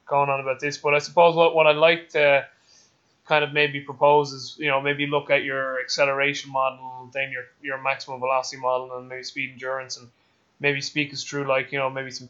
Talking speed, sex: 225 wpm, male